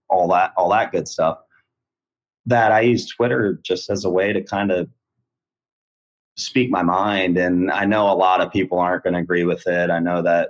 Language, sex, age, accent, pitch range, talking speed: English, male, 30-49, American, 90-115 Hz, 200 wpm